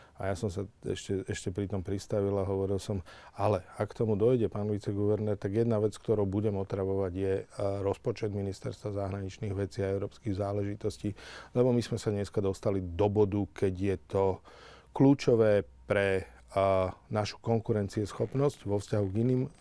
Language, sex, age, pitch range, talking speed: Slovak, male, 50-69, 100-110 Hz, 160 wpm